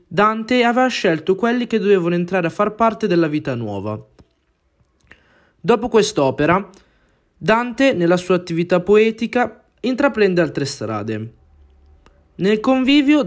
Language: Italian